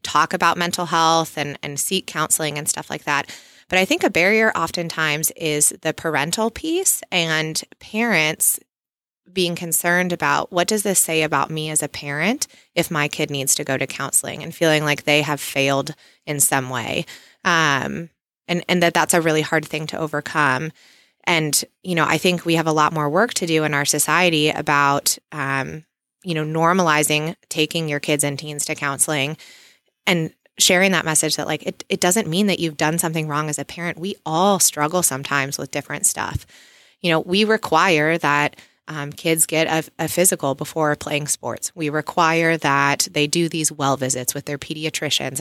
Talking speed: 190 wpm